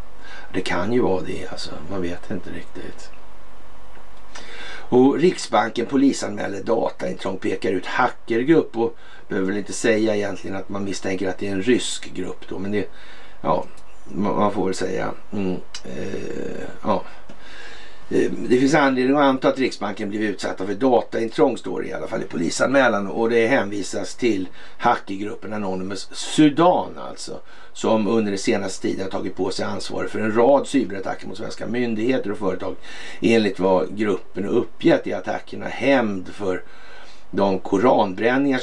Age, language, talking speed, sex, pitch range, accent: 60-79, Swedish, 150 wpm, male, 95-115 Hz, native